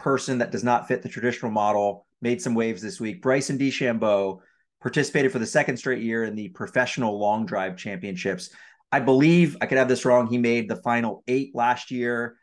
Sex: male